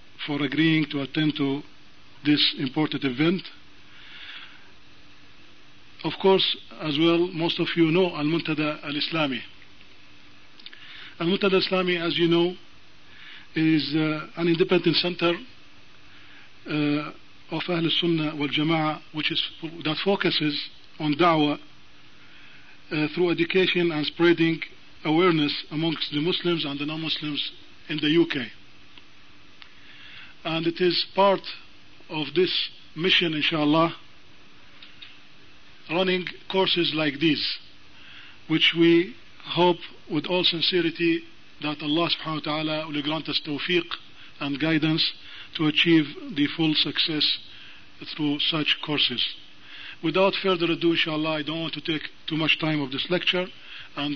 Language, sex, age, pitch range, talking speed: English, male, 50-69, 150-170 Hz, 115 wpm